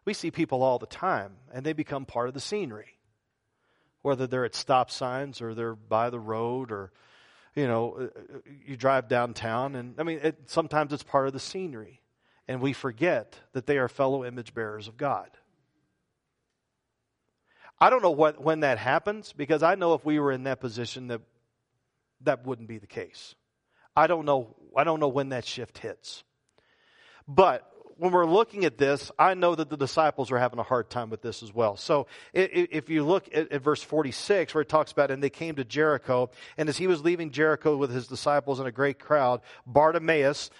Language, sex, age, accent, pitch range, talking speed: English, male, 40-59, American, 125-165 Hz, 195 wpm